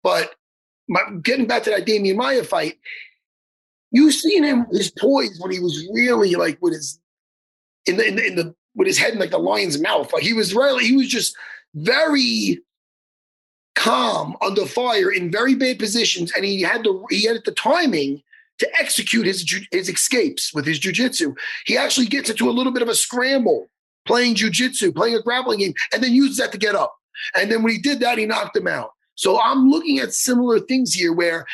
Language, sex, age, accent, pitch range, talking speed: English, male, 30-49, American, 190-275 Hz, 205 wpm